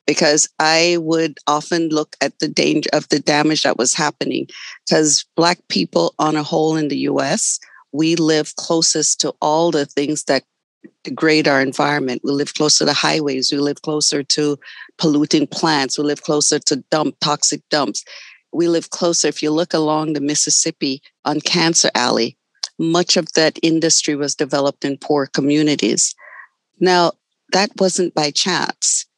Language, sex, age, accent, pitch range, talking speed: English, female, 50-69, American, 145-175 Hz, 160 wpm